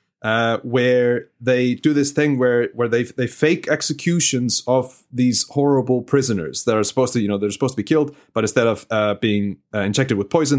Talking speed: 205 wpm